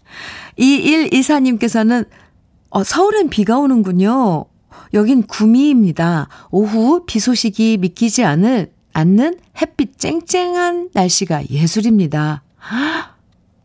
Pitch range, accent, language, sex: 175-245 Hz, native, Korean, female